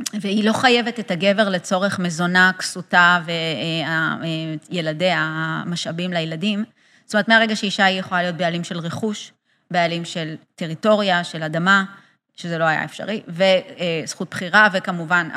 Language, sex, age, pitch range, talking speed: Hebrew, female, 30-49, 165-210 Hz, 130 wpm